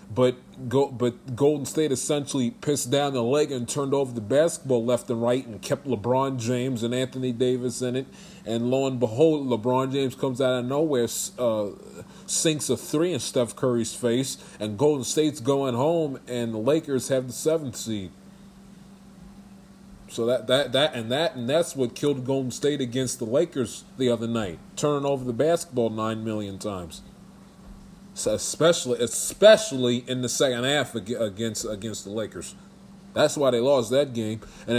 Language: English